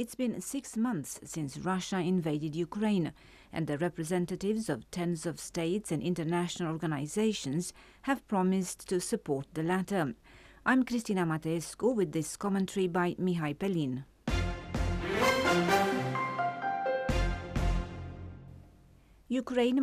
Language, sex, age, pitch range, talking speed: English, female, 40-59, 160-205 Hz, 105 wpm